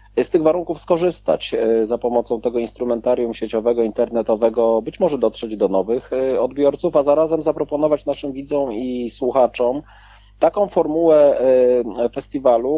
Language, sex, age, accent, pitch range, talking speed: Polish, male, 40-59, native, 115-145 Hz, 120 wpm